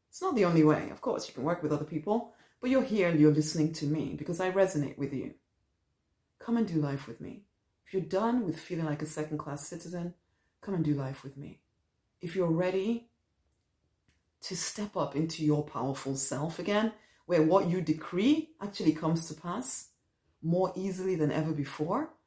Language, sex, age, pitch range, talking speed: English, female, 30-49, 150-190 Hz, 190 wpm